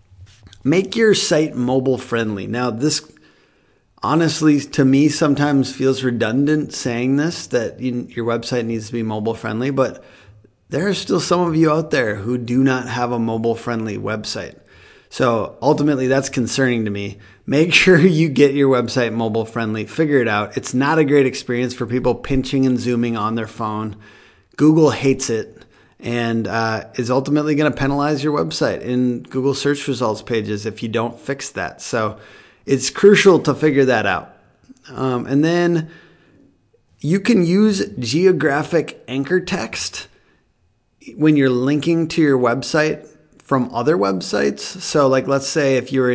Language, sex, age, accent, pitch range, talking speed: English, male, 30-49, American, 115-150 Hz, 155 wpm